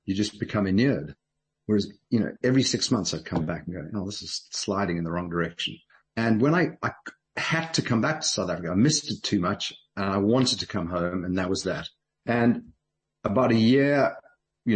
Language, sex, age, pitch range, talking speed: English, male, 50-69, 95-130 Hz, 220 wpm